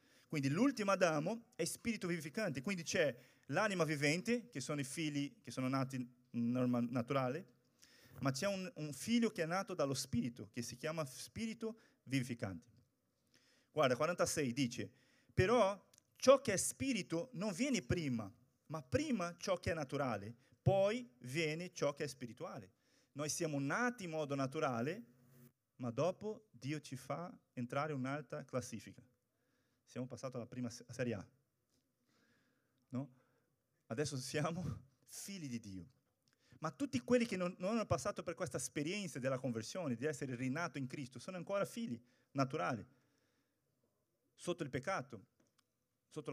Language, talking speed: Portuguese, 140 wpm